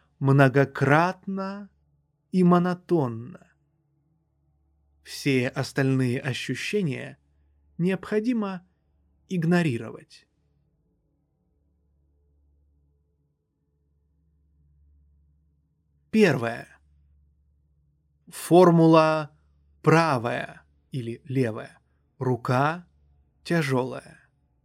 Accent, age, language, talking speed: native, 30-49, Russian, 35 wpm